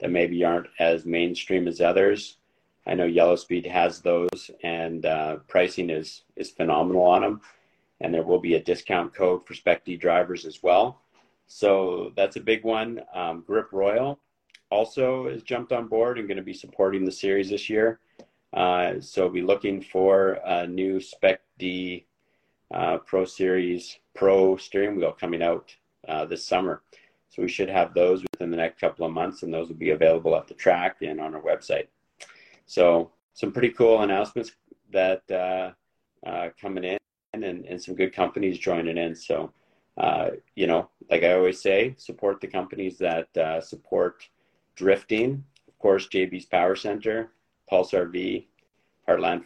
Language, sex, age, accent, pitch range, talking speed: English, male, 40-59, American, 85-95 Hz, 165 wpm